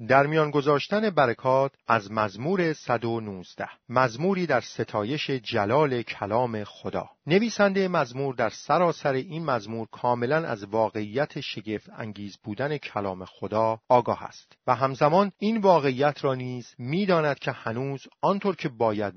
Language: Persian